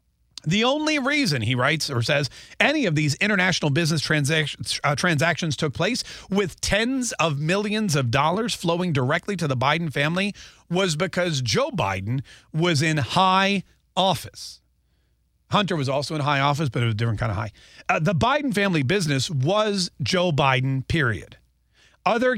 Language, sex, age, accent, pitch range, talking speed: English, male, 40-59, American, 140-190 Hz, 160 wpm